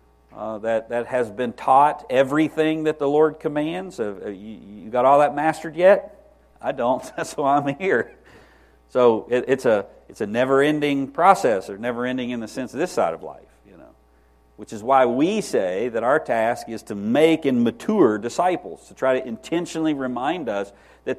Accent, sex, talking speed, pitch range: American, male, 185 wpm, 85-135 Hz